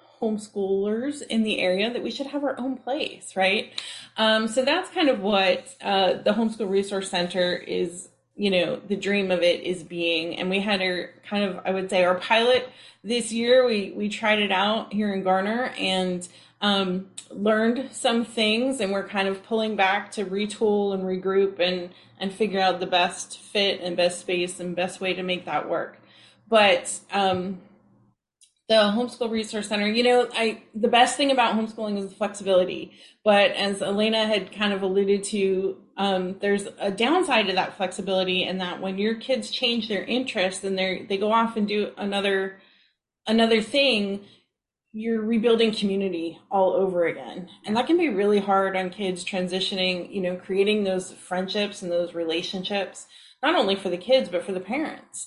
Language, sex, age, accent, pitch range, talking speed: English, female, 20-39, American, 185-225 Hz, 180 wpm